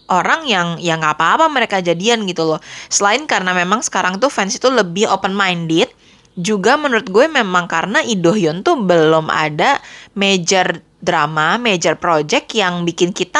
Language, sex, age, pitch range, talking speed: Indonesian, female, 20-39, 170-220 Hz, 150 wpm